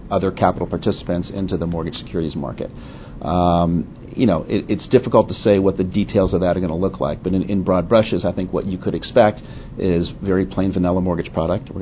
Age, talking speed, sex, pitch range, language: 40-59, 225 wpm, male, 85-95 Hz, English